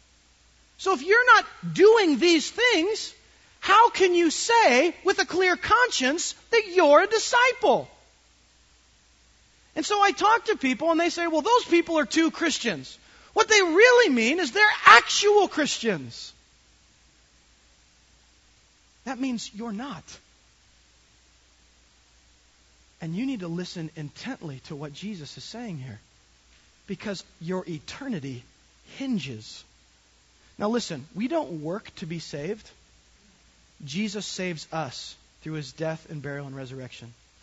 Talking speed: 130 wpm